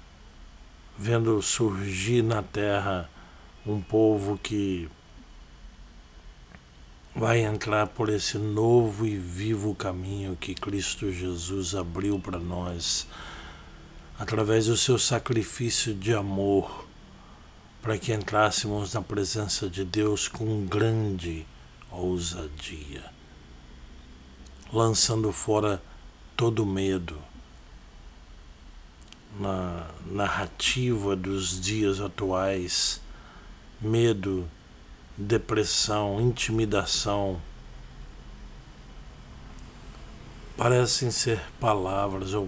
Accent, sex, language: Brazilian, male, Portuguese